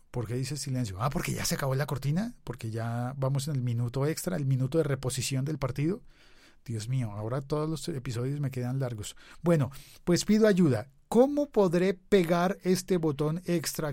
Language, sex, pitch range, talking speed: Spanish, male, 120-150 Hz, 185 wpm